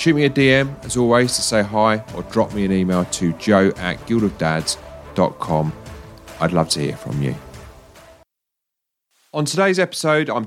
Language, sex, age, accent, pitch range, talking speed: English, male, 30-49, British, 90-120 Hz, 160 wpm